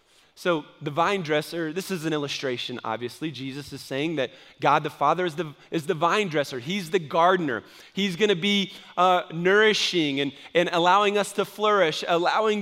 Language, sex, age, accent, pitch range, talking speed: English, male, 30-49, American, 180-225 Hz, 180 wpm